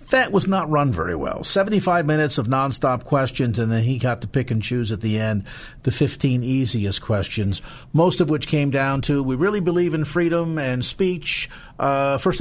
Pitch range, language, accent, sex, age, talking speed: 120-150 Hz, English, American, male, 50-69, 200 wpm